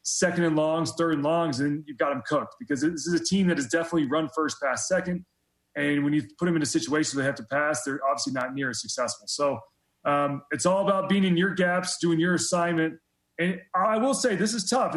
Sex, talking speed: male, 245 wpm